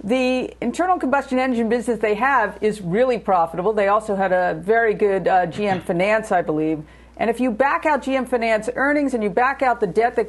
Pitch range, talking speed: 195-250 Hz, 210 wpm